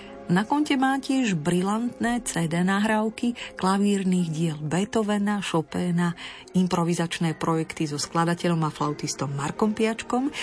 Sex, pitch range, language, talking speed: female, 165-215 Hz, Slovak, 110 wpm